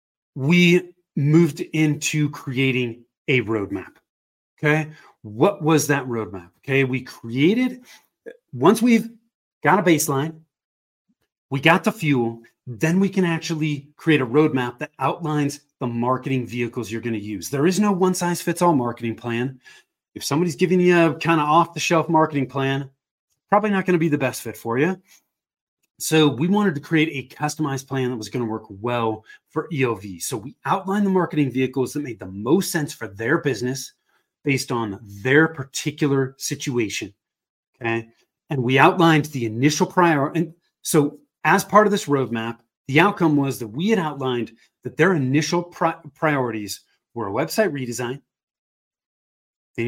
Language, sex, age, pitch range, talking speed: English, male, 30-49, 125-165 Hz, 160 wpm